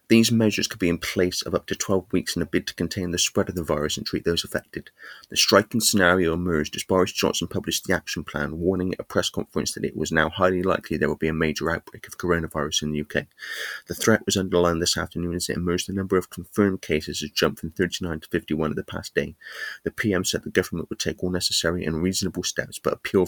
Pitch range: 80-95 Hz